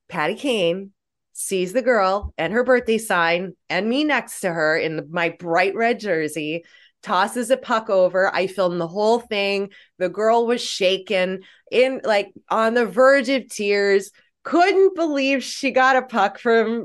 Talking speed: 165 wpm